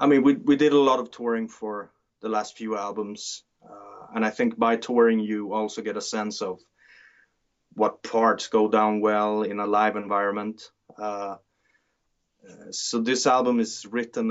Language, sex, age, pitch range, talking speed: English, male, 30-49, 105-115 Hz, 170 wpm